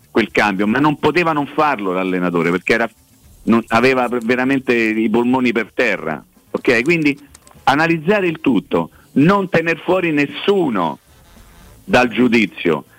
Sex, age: male, 50-69